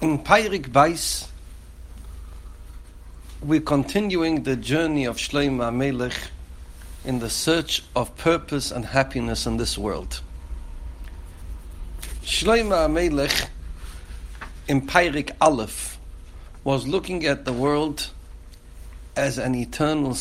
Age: 60-79